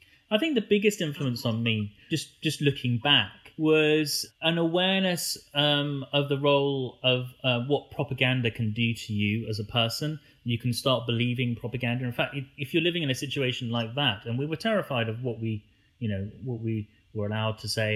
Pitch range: 105-140 Hz